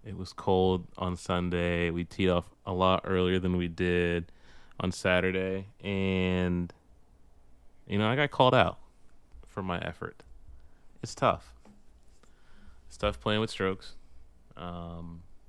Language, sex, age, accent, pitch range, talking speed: English, male, 20-39, American, 85-95 Hz, 130 wpm